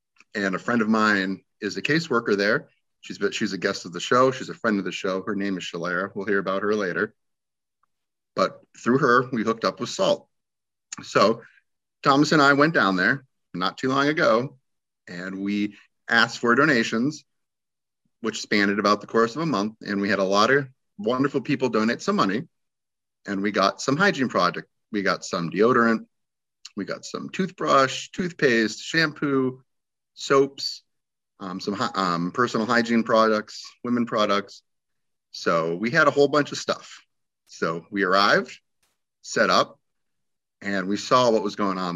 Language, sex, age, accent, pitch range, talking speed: English, male, 30-49, American, 100-125 Hz, 170 wpm